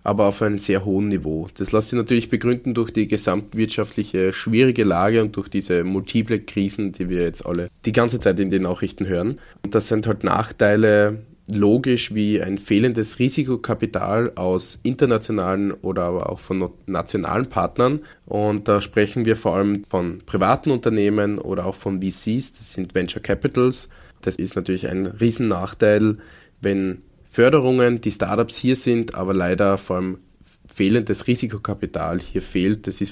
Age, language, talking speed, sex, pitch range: 20-39, German, 160 wpm, male, 95-115 Hz